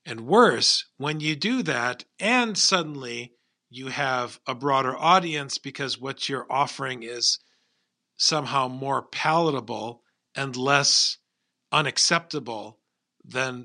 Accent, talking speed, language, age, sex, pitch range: American, 110 wpm, English, 50-69, male, 130-180 Hz